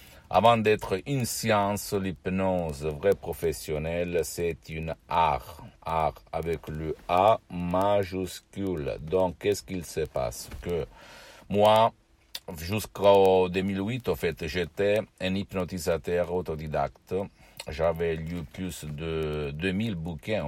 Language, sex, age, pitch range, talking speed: Italian, male, 60-79, 80-95 Hz, 105 wpm